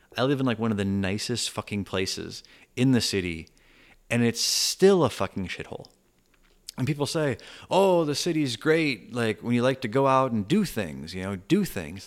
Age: 30-49